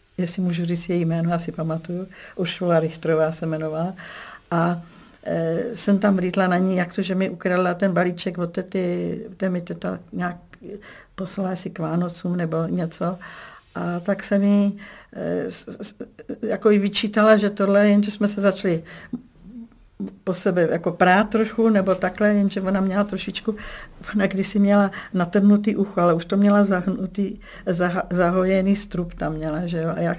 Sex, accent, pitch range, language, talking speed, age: female, native, 175-200 Hz, Czech, 160 wpm, 50-69